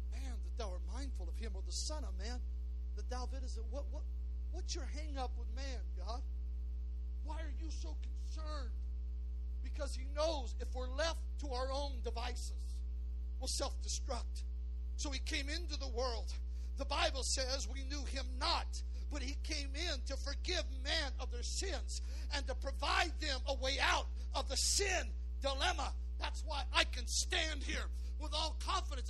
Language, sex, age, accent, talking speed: English, male, 50-69, American, 170 wpm